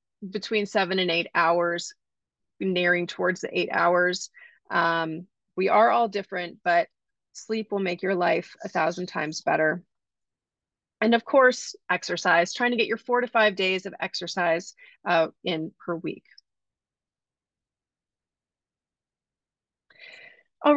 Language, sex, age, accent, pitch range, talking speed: English, female, 30-49, American, 180-255 Hz, 125 wpm